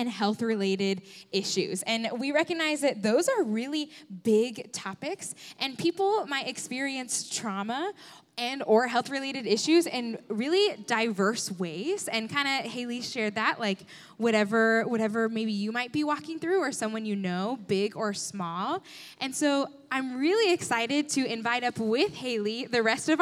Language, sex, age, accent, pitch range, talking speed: English, female, 10-29, American, 225-305 Hz, 155 wpm